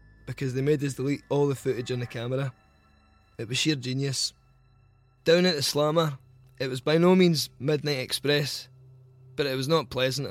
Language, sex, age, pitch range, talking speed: English, male, 20-39, 120-145 Hz, 180 wpm